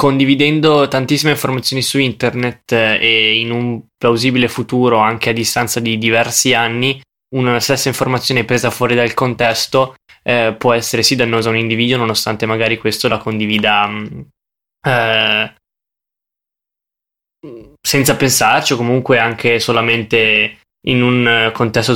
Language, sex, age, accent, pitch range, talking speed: Italian, male, 10-29, native, 115-125 Hz, 125 wpm